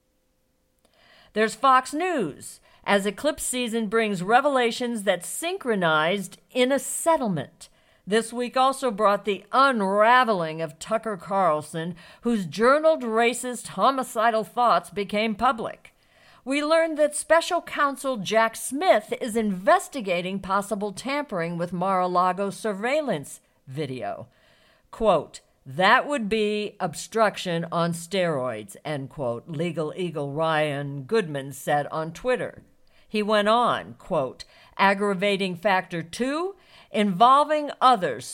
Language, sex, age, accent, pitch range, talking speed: English, female, 50-69, American, 170-245 Hz, 110 wpm